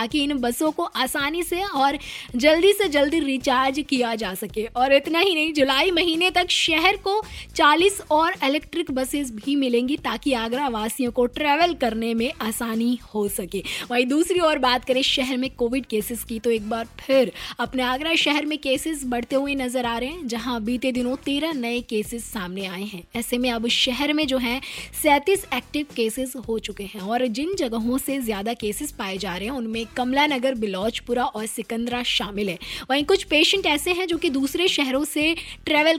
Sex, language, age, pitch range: female, Hindi, 20-39, 230-295 Hz